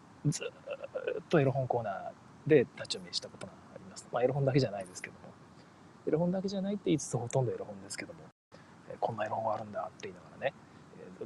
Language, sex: Japanese, male